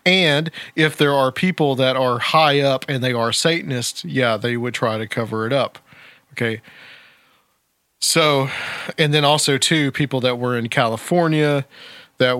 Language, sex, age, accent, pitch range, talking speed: English, male, 40-59, American, 115-140 Hz, 160 wpm